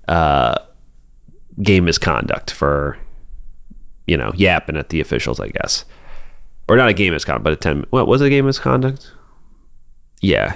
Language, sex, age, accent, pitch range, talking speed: English, male, 30-49, American, 85-110 Hz, 155 wpm